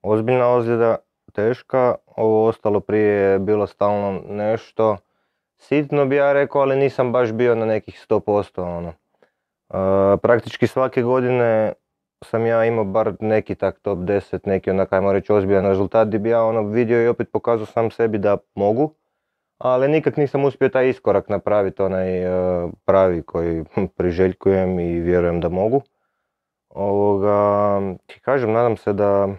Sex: male